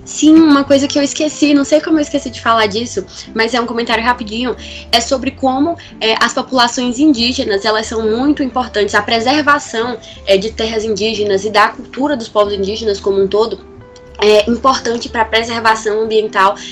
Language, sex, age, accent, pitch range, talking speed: Portuguese, female, 10-29, Brazilian, 200-245 Hz, 175 wpm